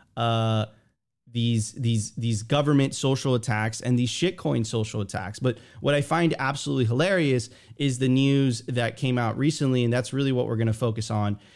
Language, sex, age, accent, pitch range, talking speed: English, male, 30-49, American, 115-145 Hz, 170 wpm